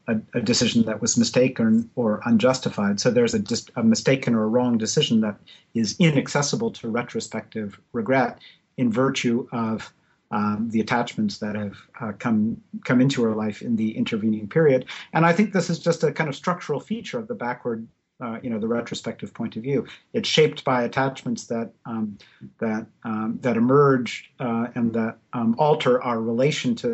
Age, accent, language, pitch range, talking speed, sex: 50-69, American, English, 115-165 Hz, 180 wpm, male